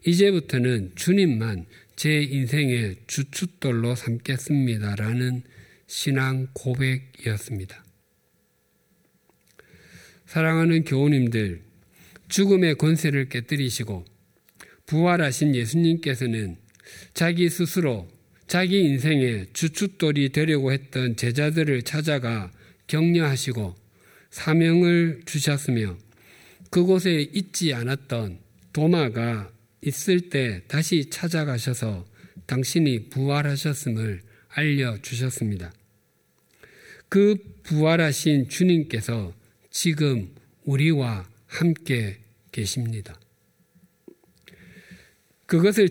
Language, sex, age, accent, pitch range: Korean, male, 50-69, native, 115-165 Hz